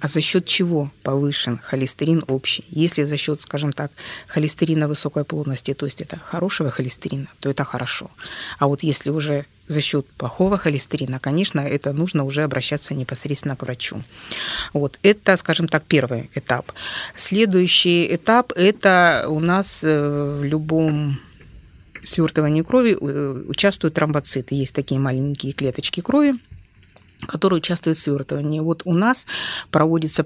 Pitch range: 140-170 Hz